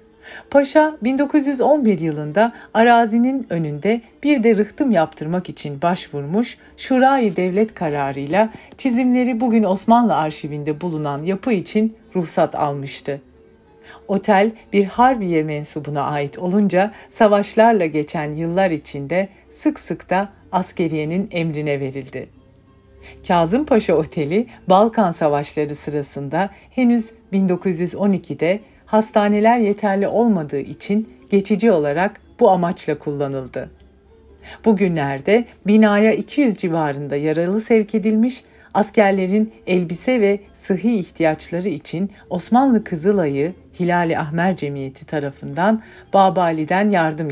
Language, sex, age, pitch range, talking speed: Turkish, female, 40-59, 155-220 Hz, 100 wpm